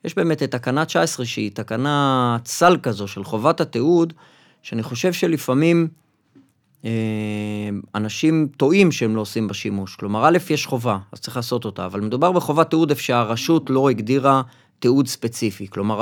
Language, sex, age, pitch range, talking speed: Hebrew, male, 30-49, 115-165 Hz, 150 wpm